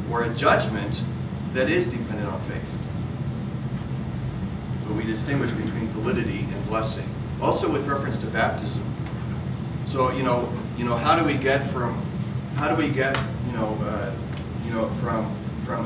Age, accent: 40-59, American